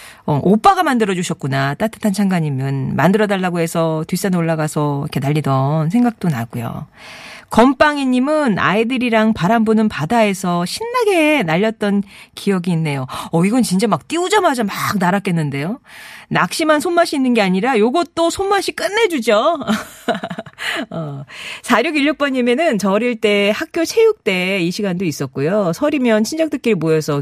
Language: Korean